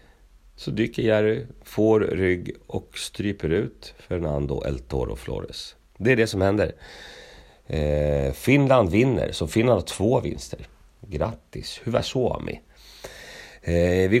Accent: native